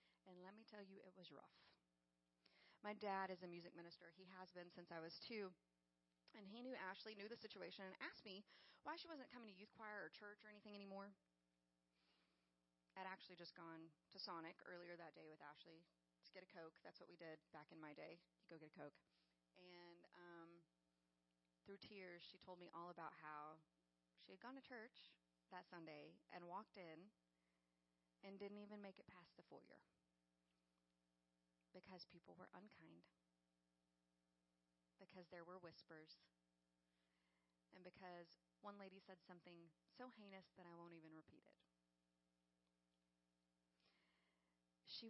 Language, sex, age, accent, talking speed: English, female, 30-49, American, 160 wpm